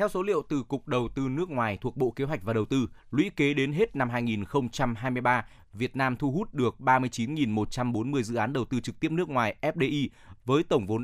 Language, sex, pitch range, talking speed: Vietnamese, male, 110-140 Hz, 215 wpm